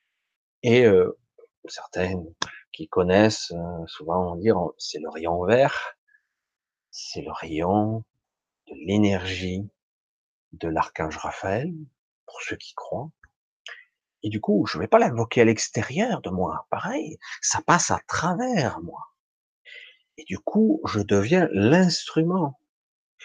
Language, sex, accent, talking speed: French, male, French, 130 wpm